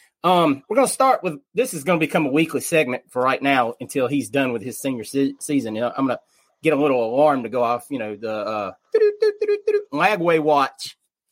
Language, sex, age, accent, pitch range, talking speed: English, male, 30-49, American, 135-185 Hz, 230 wpm